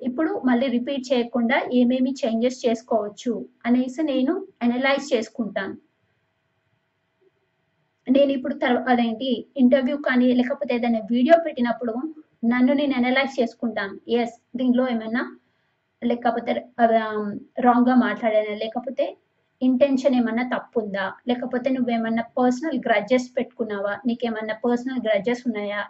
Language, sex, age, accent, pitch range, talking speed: Telugu, female, 20-39, native, 235-270 Hz, 100 wpm